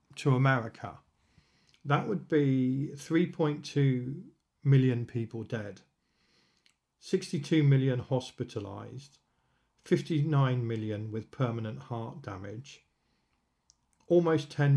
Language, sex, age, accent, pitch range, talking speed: English, male, 40-59, British, 115-145 Hz, 80 wpm